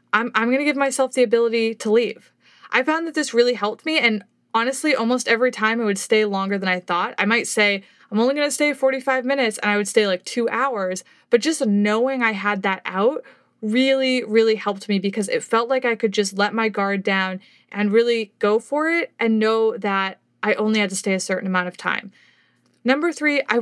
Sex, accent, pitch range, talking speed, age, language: female, American, 205-260 Hz, 225 wpm, 20-39, English